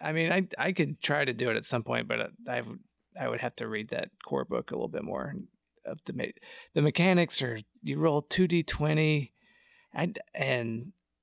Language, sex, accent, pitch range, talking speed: English, male, American, 115-150 Hz, 205 wpm